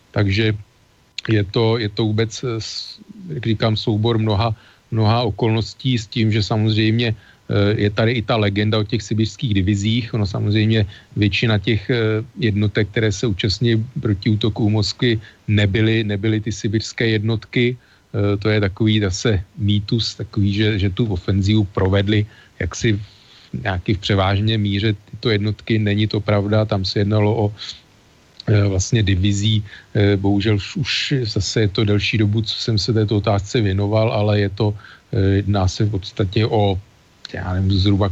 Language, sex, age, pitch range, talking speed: Slovak, male, 40-59, 100-115 Hz, 145 wpm